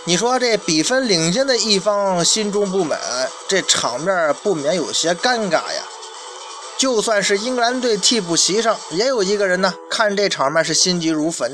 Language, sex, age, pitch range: Chinese, male, 20-39, 200-270 Hz